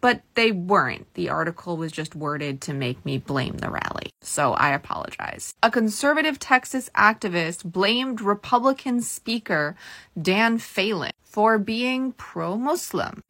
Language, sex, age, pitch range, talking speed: English, female, 20-39, 155-210 Hz, 130 wpm